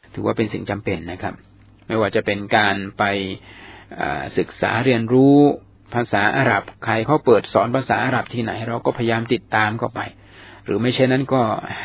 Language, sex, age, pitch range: Thai, male, 60-79, 105-140 Hz